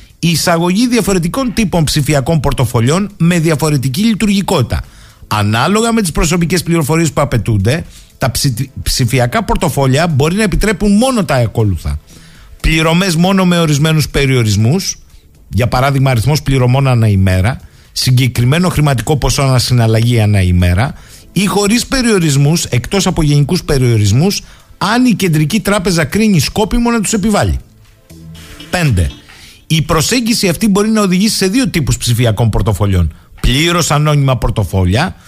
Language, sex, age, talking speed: Greek, male, 50-69, 125 wpm